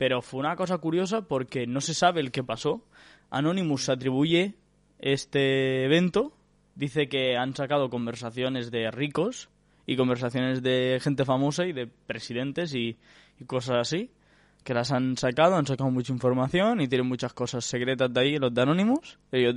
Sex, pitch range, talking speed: male, 125-155 Hz, 165 wpm